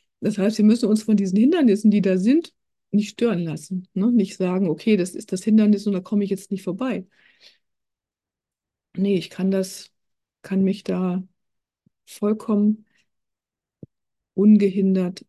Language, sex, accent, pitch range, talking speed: German, female, German, 180-215 Hz, 140 wpm